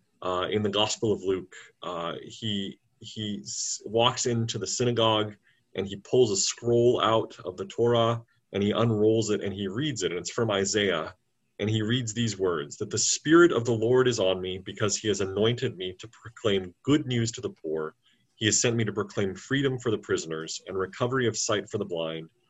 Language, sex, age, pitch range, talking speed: English, male, 30-49, 100-120 Hz, 205 wpm